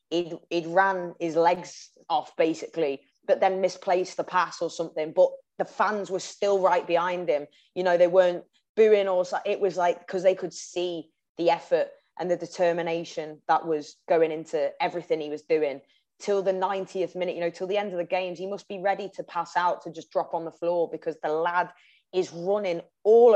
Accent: British